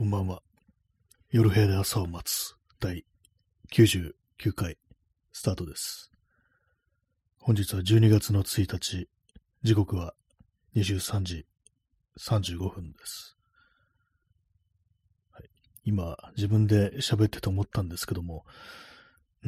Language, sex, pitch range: Japanese, male, 90-110 Hz